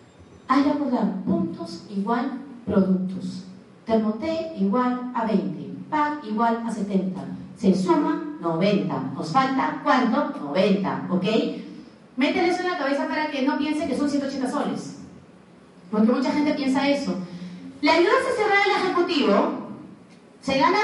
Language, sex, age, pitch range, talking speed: Spanish, female, 40-59, 205-295 Hz, 140 wpm